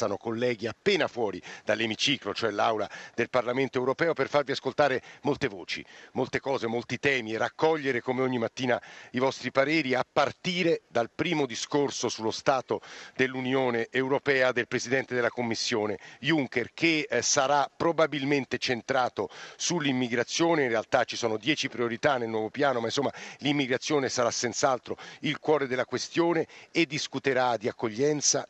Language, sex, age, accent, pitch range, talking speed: Italian, male, 50-69, native, 120-145 Hz, 145 wpm